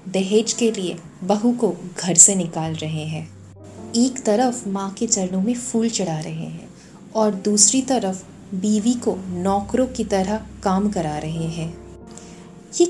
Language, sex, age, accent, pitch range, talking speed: Hindi, female, 20-39, native, 185-240 Hz, 155 wpm